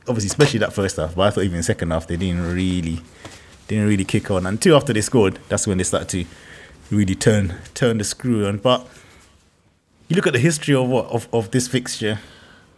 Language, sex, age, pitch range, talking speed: English, male, 20-39, 90-120 Hz, 215 wpm